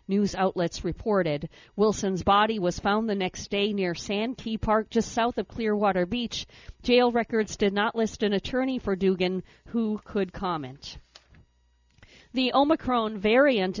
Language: English